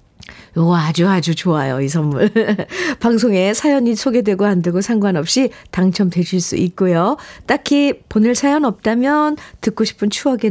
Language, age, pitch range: Korean, 50-69, 165-225 Hz